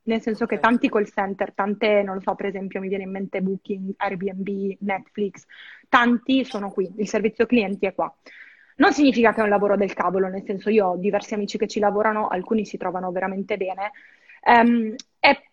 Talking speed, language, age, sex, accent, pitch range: 195 wpm, Italian, 20-39, female, native, 200-235 Hz